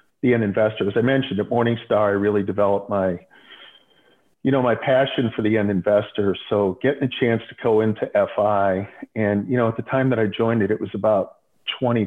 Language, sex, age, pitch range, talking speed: English, male, 50-69, 100-120 Hz, 210 wpm